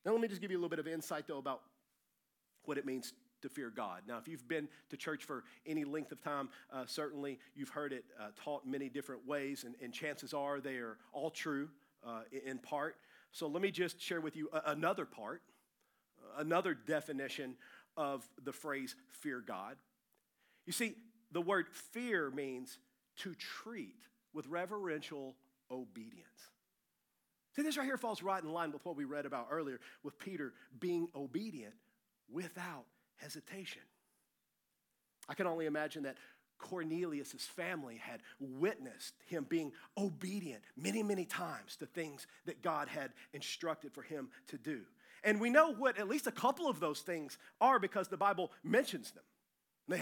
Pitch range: 140-195 Hz